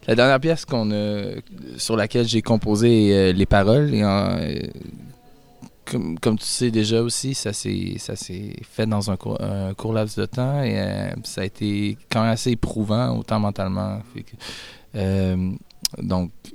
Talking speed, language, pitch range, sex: 180 wpm, French, 95-110 Hz, male